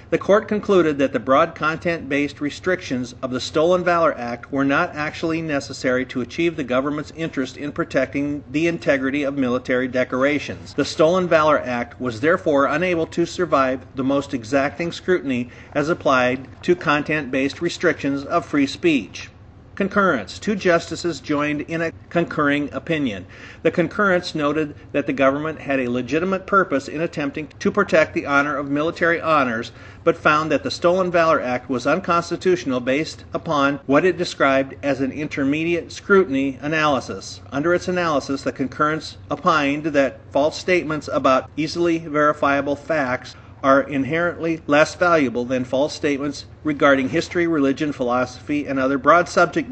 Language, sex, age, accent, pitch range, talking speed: English, male, 50-69, American, 135-165 Hz, 150 wpm